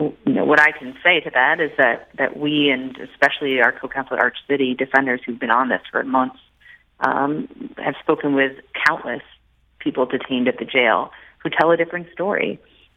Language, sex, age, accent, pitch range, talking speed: English, female, 30-49, American, 130-160 Hz, 180 wpm